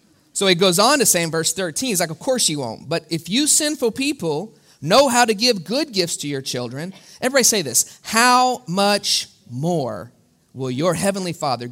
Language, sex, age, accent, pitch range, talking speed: English, male, 30-49, American, 150-200 Hz, 200 wpm